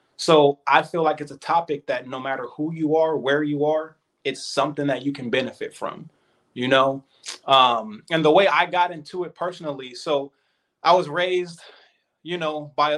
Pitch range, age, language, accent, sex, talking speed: 140-160 Hz, 20-39, English, American, male, 190 wpm